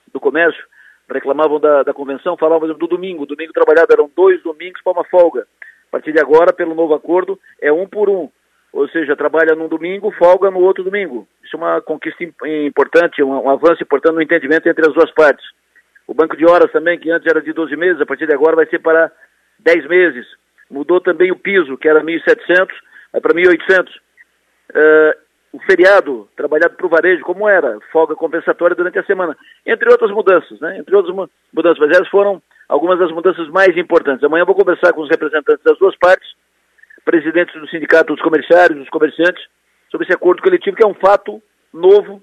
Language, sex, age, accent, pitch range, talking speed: Portuguese, male, 50-69, Brazilian, 160-200 Hz, 195 wpm